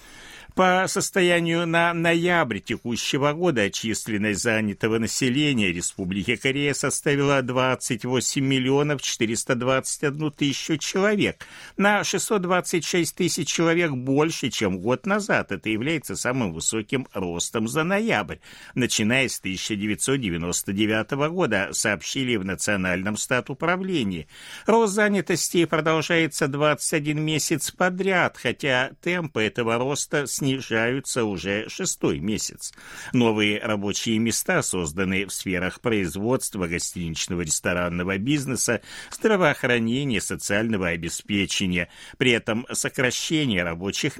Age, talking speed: 60-79, 95 wpm